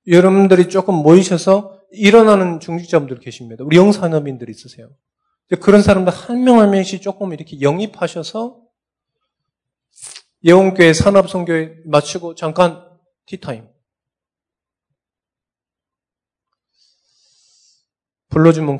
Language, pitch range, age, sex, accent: Korean, 135-190 Hz, 20-39, male, native